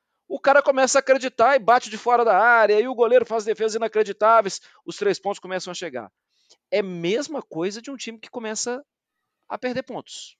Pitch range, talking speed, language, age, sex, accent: 155-230 Hz, 200 wpm, Portuguese, 40-59, male, Brazilian